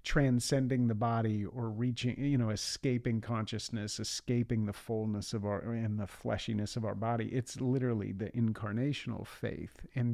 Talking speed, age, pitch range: 155 wpm, 40-59, 110-135 Hz